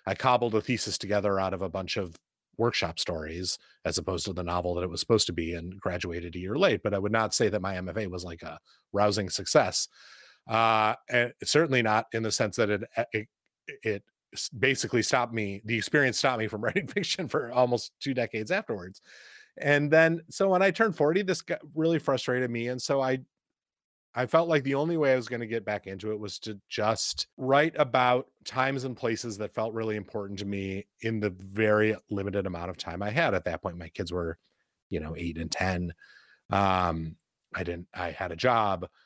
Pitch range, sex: 95-120 Hz, male